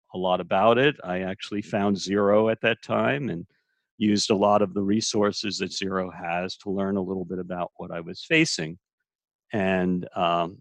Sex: male